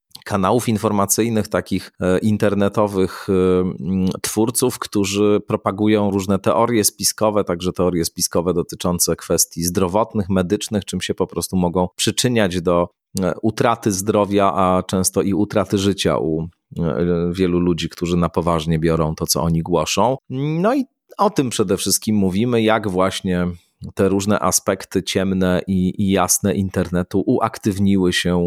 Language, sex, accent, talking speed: Polish, male, native, 130 wpm